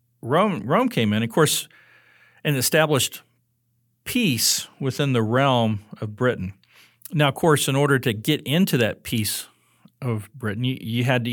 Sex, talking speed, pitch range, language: male, 160 wpm, 110-140 Hz, English